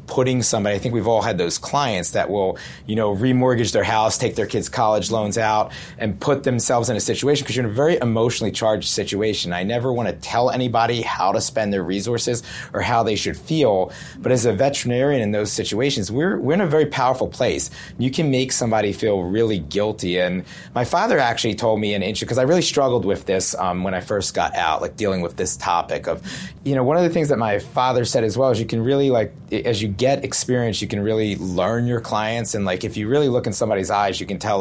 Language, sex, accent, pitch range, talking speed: English, male, American, 105-130 Hz, 240 wpm